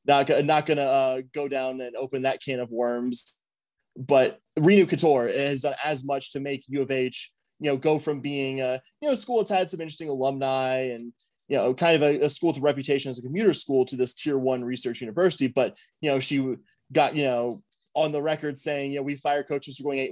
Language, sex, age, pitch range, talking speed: English, male, 20-39, 135-165 Hz, 235 wpm